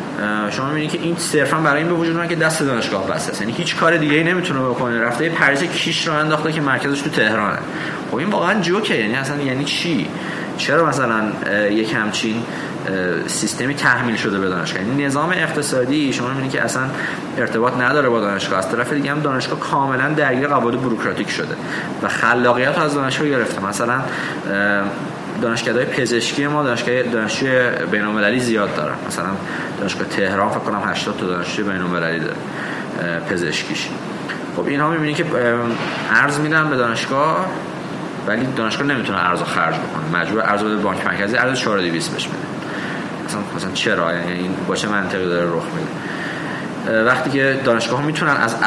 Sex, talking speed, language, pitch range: male, 165 wpm, Persian, 105-150 Hz